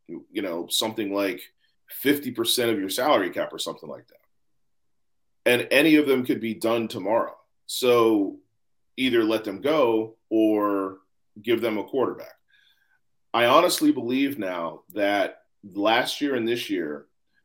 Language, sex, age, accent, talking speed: English, male, 40-59, American, 140 wpm